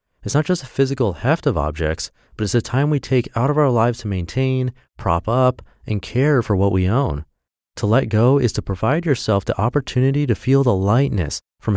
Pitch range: 90-125 Hz